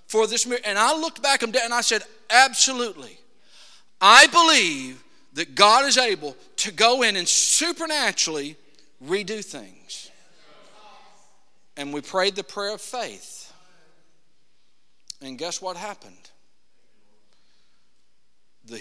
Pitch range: 150-225 Hz